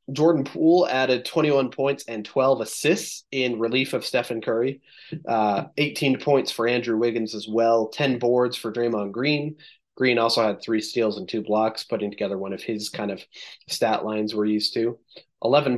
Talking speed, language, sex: 180 wpm, English, male